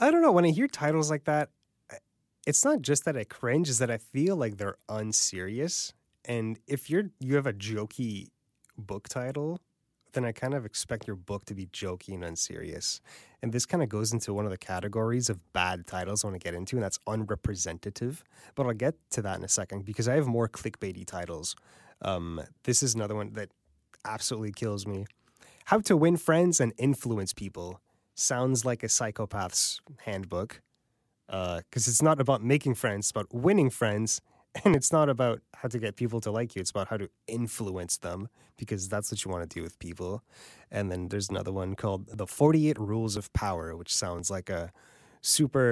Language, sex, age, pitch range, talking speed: English, male, 20-39, 100-135 Hz, 200 wpm